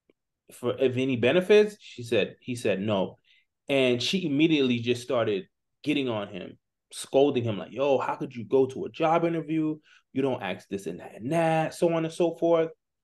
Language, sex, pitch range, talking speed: English, male, 125-165 Hz, 190 wpm